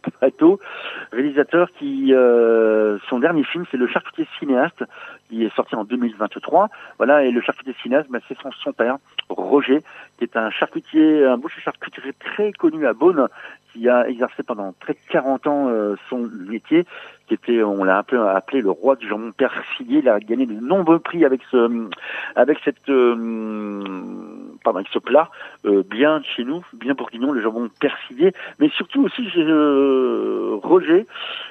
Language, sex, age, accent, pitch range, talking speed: French, male, 50-69, French, 115-175 Hz, 180 wpm